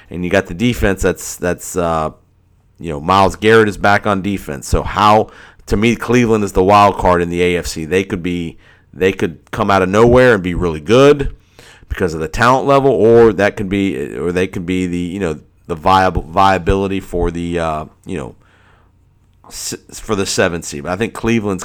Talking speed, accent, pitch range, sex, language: 200 wpm, American, 90-110 Hz, male, English